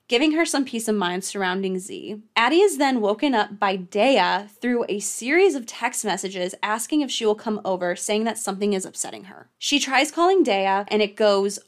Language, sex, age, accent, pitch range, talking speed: English, female, 20-39, American, 195-235 Hz, 205 wpm